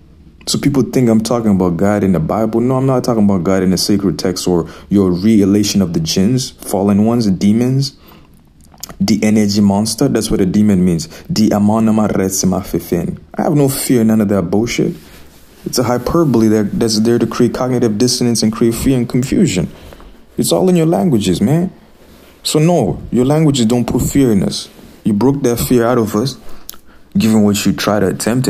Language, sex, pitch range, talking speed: English, male, 100-130 Hz, 185 wpm